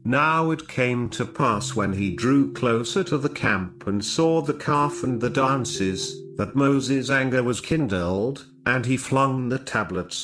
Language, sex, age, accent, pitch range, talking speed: English, male, 50-69, British, 105-145 Hz, 170 wpm